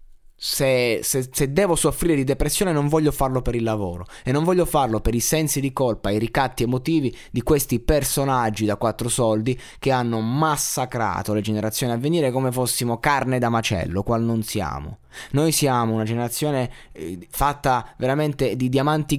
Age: 20-39